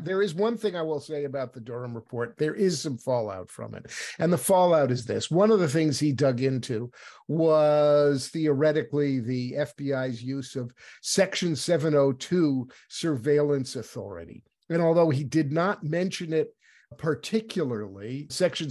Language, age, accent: English, 50-69, American